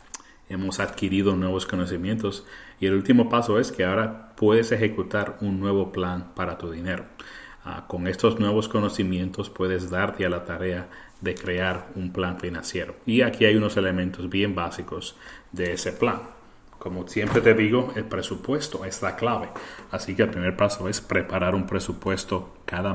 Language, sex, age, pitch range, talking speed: Spanish, male, 30-49, 90-100 Hz, 165 wpm